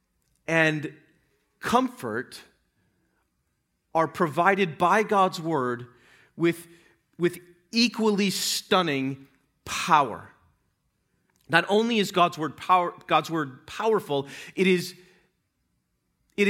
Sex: male